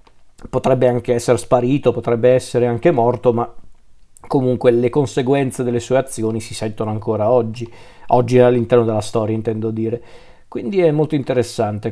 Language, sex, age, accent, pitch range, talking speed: Italian, male, 40-59, native, 115-135 Hz, 150 wpm